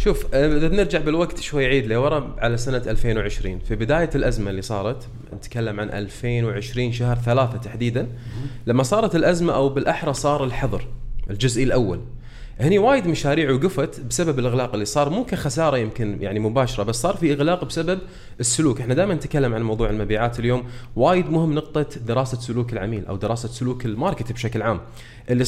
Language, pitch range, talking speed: Arabic, 115-150 Hz, 165 wpm